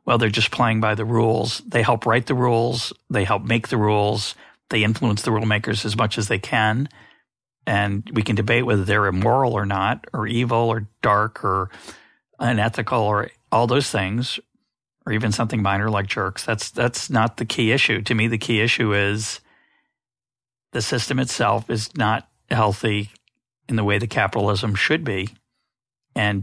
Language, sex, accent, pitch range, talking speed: English, male, American, 105-120 Hz, 175 wpm